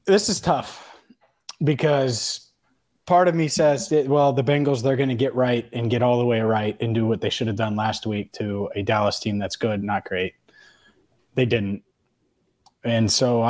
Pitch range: 115-160 Hz